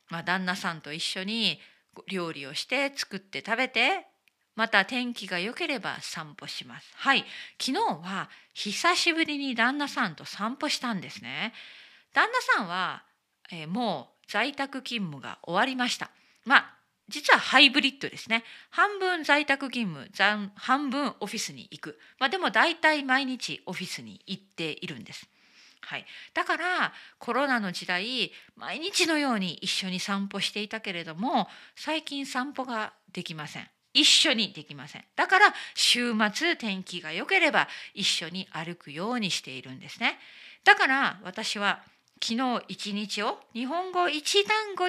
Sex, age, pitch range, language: female, 40-59, 190-280 Hz, Japanese